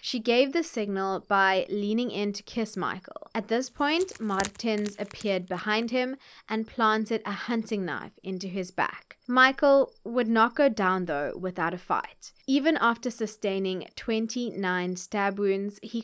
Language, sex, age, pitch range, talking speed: English, female, 20-39, 185-230 Hz, 155 wpm